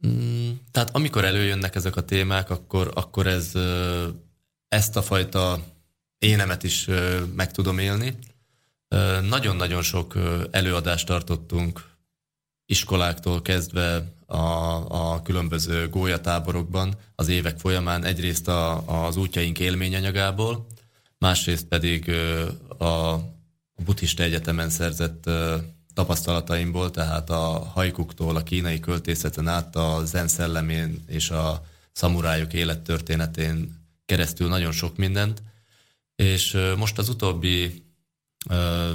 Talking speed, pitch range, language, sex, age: 100 wpm, 85-95 Hz, Slovak, male, 20-39